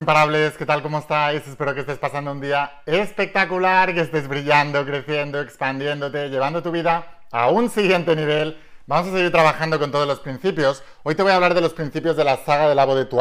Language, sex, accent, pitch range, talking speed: Spanish, male, Spanish, 135-155 Hz, 215 wpm